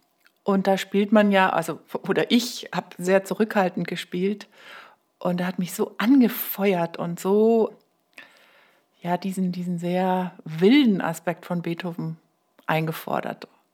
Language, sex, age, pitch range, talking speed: German, female, 60-79, 180-220 Hz, 125 wpm